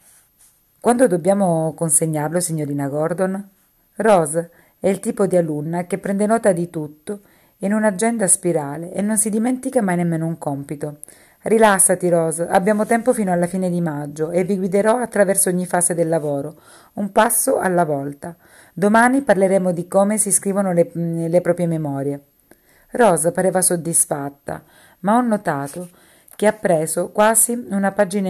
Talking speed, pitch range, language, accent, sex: 150 wpm, 155-195 Hz, Italian, native, female